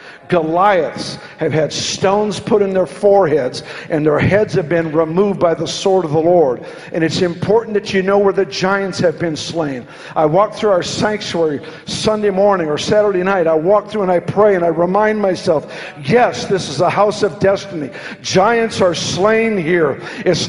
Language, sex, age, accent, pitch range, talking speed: English, male, 50-69, American, 180-225 Hz, 185 wpm